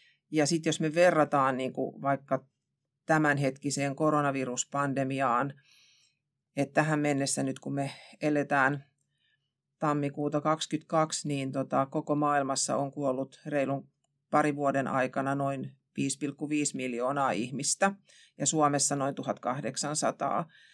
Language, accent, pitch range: Finnish, native, 135-155 Hz